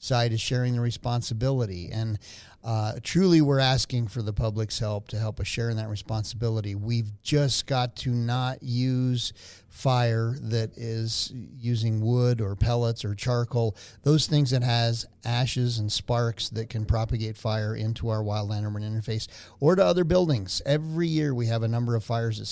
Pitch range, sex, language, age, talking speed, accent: 110-120 Hz, male, English, 40-59, 175 wpm, American